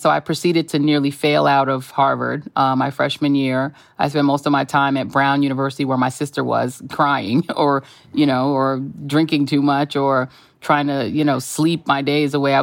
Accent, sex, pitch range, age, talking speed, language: American, female, 135-155 Hz, 30-49, 210 wpm, English